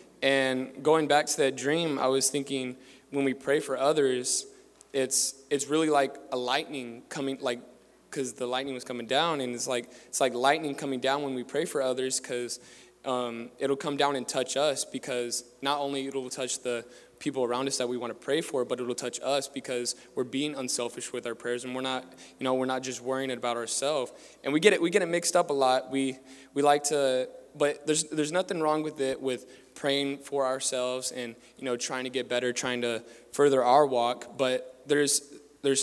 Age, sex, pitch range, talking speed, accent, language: 20-39, male, 125-140 Hz, 215 wpm, American, English